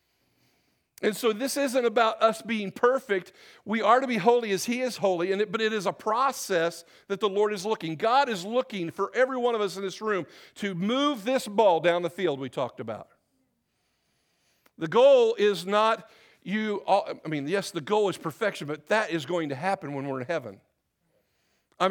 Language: English